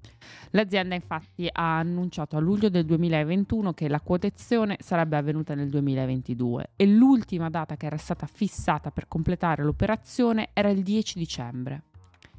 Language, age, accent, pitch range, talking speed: Italian, 20-39, native, 140-195 Hz, 140 wpm